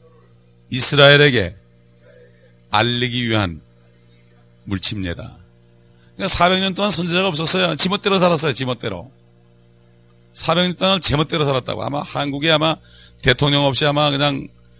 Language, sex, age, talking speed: English, male, 40-59, 90 wpm